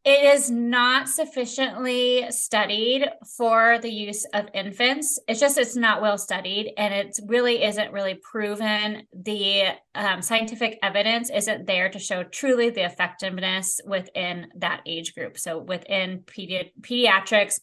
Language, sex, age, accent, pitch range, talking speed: English, female, 20-39, American, 195-250 Hz, 135 wpm